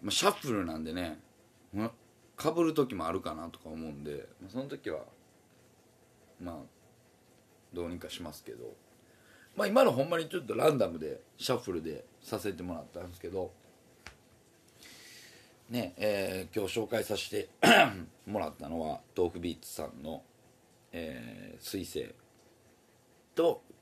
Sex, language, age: male, Japanese, 40-59